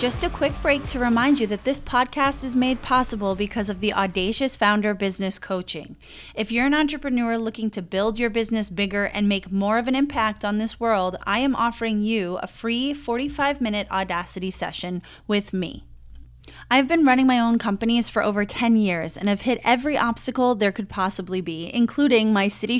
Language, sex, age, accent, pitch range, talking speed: English, female, 20-39, American, 195-250 Hz, 190 wpm